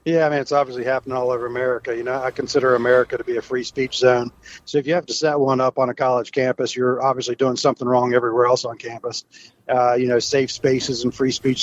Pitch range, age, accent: 125-140 Hz, 40-59, American